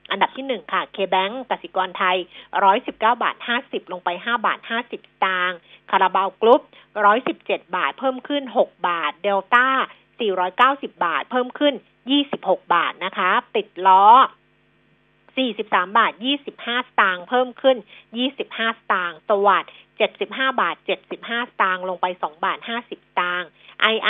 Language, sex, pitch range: Thai, female, 185-250 Hz